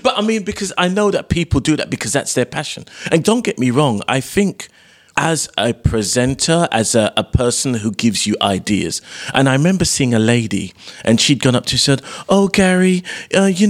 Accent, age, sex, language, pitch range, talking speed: British, 40-59, male, English, 120-170 Hz, 210 wpm